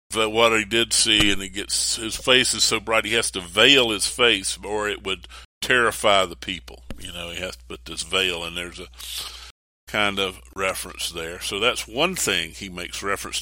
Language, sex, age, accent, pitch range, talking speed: English, male, 50-69, American, 70-115 Hz, 205 wpm